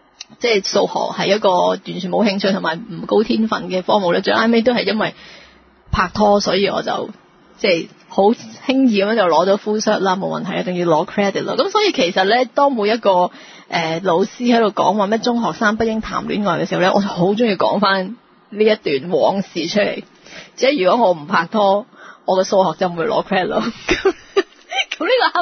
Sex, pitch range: female, 185-235 Hz